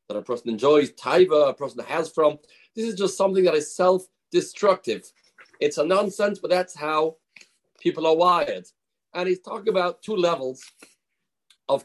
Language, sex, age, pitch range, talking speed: English, male, 40-59, 155-195 Hz, 155 wpm